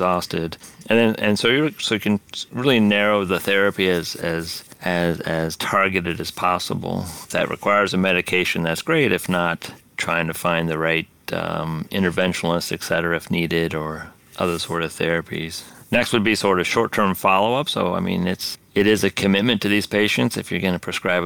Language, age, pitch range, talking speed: English, 40-59, 85-95 Hz, 190 wpm